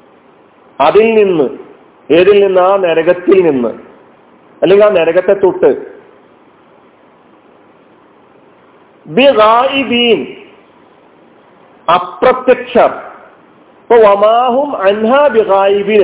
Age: 50-69